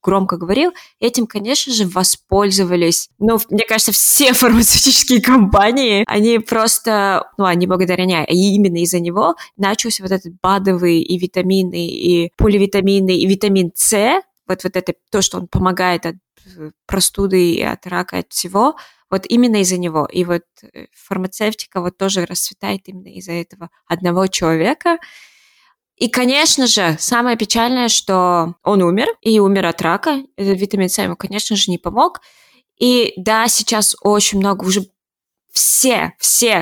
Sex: female